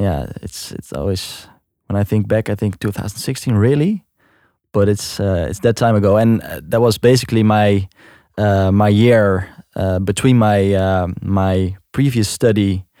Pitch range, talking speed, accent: 95-110 Hz, 160 wpm, Dutch